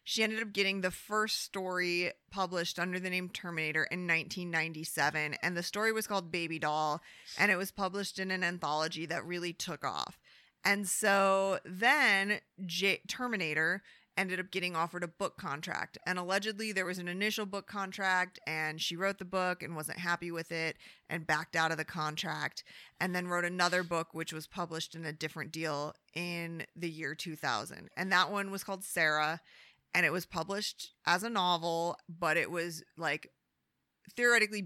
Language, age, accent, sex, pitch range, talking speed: English, 30-49, American, female, 165-195 Hz, 175 wpm